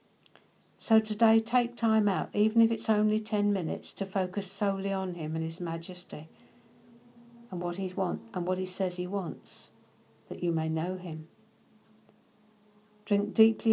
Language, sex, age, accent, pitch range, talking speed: English, female, 60-79, British, 175-210 Hz, 155 wpm